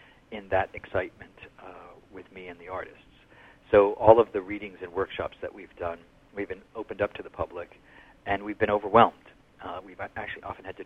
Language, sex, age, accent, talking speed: English, male, 50-69, American, 200 wpm